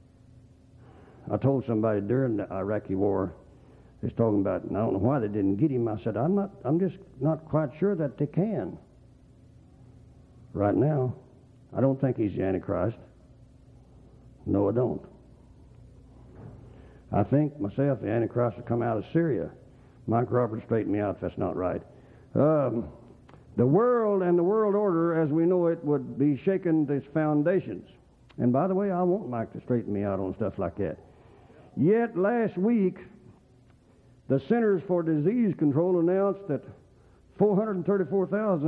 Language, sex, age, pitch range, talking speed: English, male, 60-79, 115-170 Hz, 160 wpm